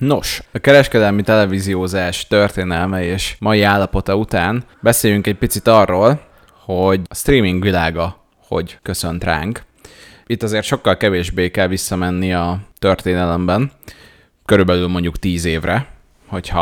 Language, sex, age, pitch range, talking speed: Hungarian, male, 20-39, 85-105 Hz, 120 wpm